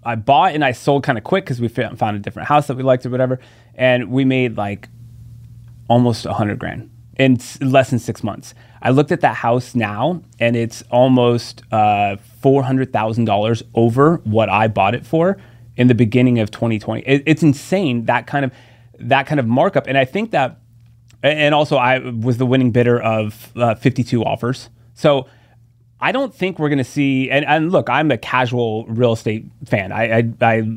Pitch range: 115-135 Hz